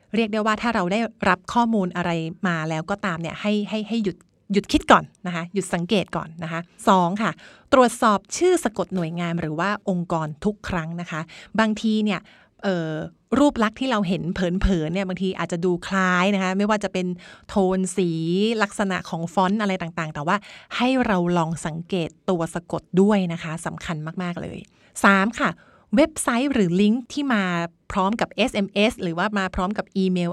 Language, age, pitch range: Thai, 30-49, 175-215 Hz